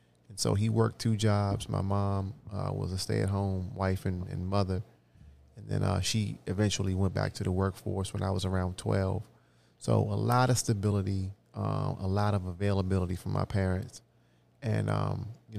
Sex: male